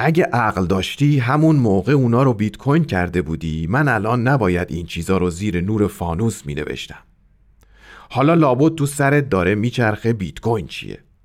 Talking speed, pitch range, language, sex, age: 160 wpm, 95-150 Hz, Persian, male, 40-59